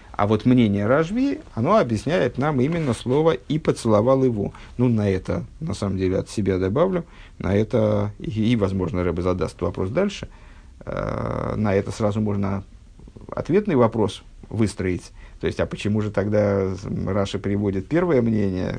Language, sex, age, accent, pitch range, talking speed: Russian, male, 50-69, native, 100-125 Hz, 150 wpm